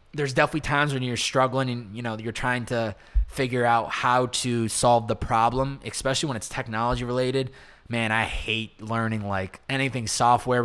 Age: 20-39